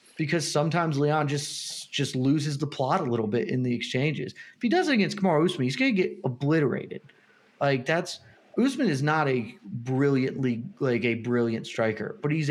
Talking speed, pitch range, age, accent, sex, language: 185 wpm, 115-150 Hz, 30-49, American, male, English